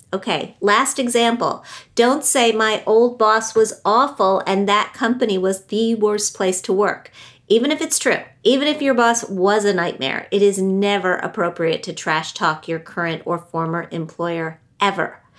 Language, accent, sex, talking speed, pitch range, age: English, American, female, 170 wpm, 165-215 Hz, 50-69